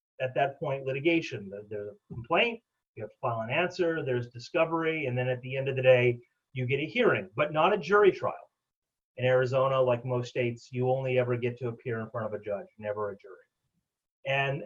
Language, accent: English, American